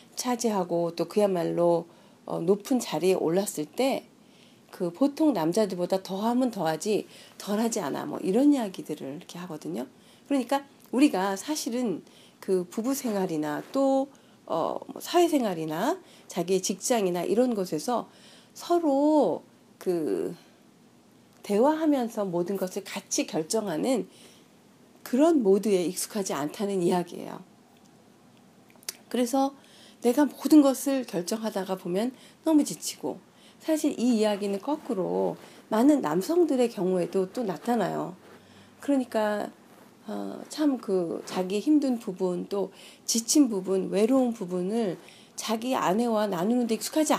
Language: Korean